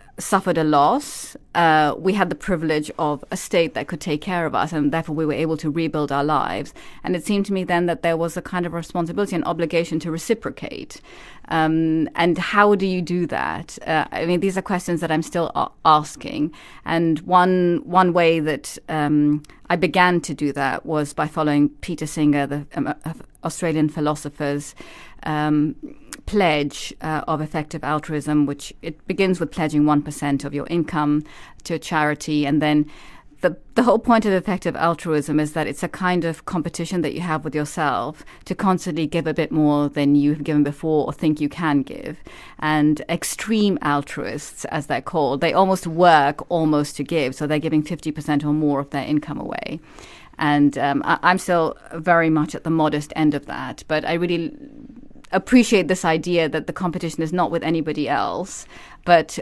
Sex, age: female, 30-49